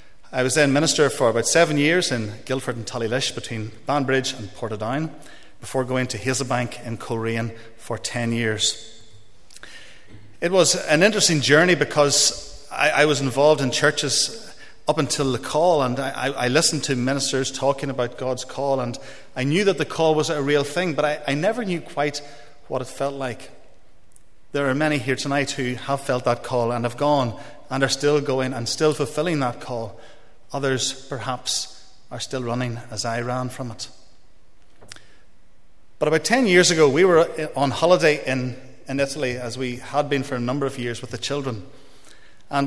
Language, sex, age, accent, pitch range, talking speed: English, male, 30-49, Irish, 120-150 Hz, 180 wpm